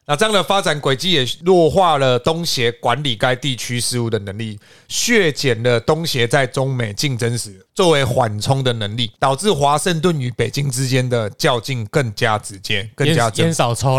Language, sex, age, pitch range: Chinese, male, 30-49, 115-145 Hz